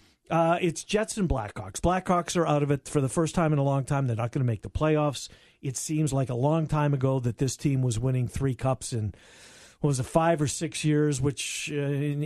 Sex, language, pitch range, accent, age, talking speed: male, English, 140-190 Hz, American, 50-69, 245 wpm